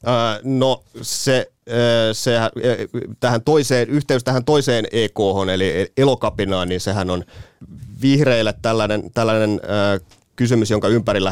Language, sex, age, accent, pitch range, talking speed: Finnish, male, 30-49, native, 95-110 Hz, 105 wpm